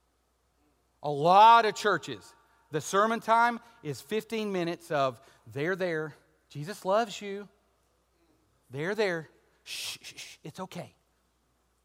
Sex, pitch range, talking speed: male, 155-210 Hz, 120 wpm